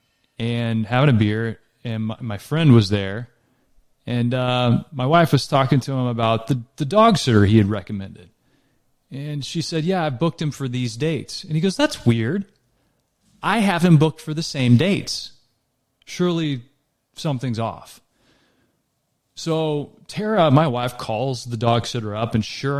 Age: 30-49